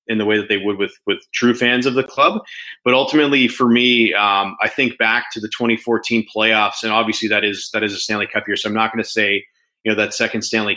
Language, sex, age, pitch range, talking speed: English, male, 20-39, 105-115 Hz, 255 wpm